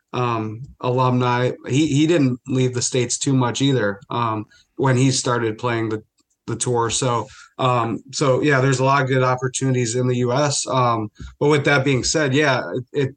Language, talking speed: English, 190 wpm